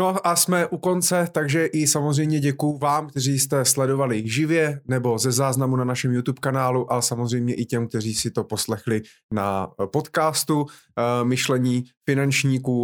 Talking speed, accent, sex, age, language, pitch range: 155 wpm, native, male, 30-49, Czech, 120-140 Hz